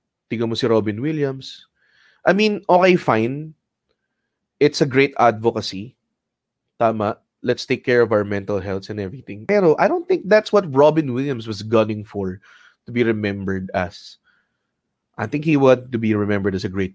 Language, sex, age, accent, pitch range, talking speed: English, male, 20-39, Filipino, 105-165 Hz, 170 wpm